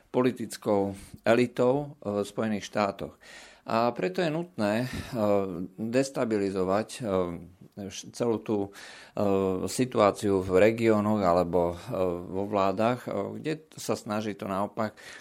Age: 50-69